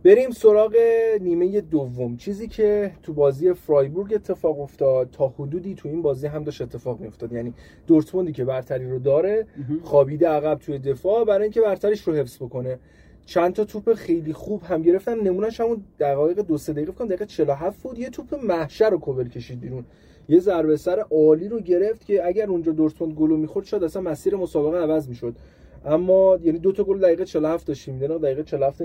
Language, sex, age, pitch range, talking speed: Persian, male, 30-49, 140-200 Hz, 180 wpm